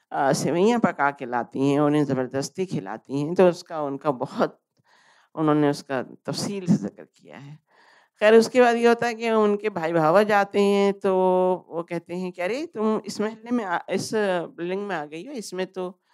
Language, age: Hindi, 50-69